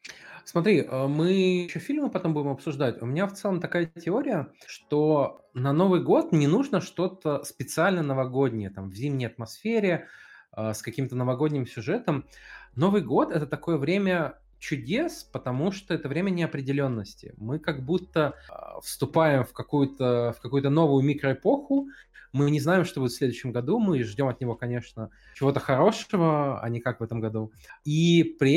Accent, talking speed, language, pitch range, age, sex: native, 155 wpm, Russian, 130-175 Hz, 20-39, male